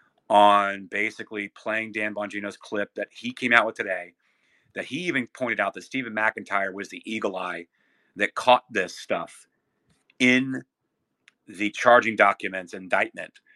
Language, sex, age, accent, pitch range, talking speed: English, male, 40-59, American, 100-120 Hz, 145 wpm